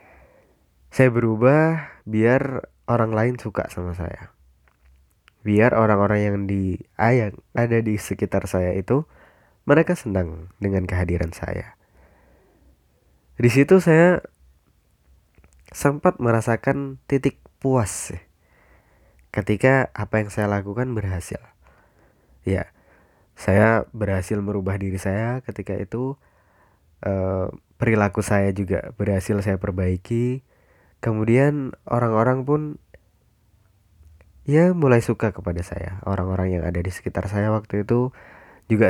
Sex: male